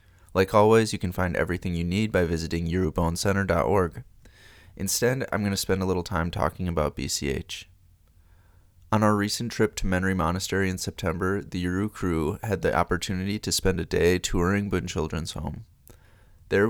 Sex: male